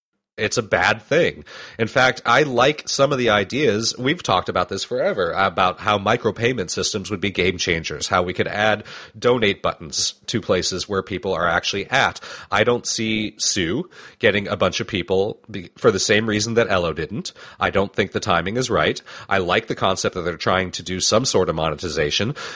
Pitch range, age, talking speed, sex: 95-120 Hz, 30-49, 200 wpm, male